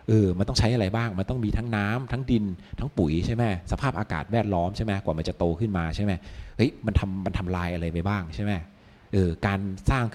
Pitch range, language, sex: 85-110 Hz, Thai, male